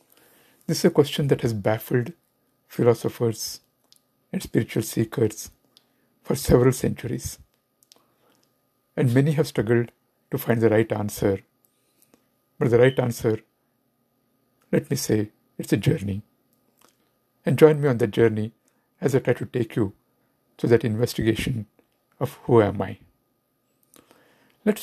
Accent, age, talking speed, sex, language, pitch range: Indian, 60-79, 130 wpm, male, English, 115-145 Hz